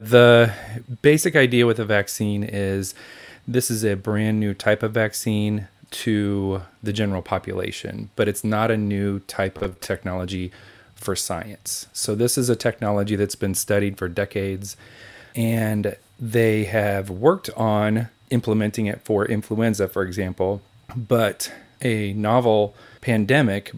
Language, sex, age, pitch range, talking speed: English, male, 30-49, 100-120 Hz, 135 wpm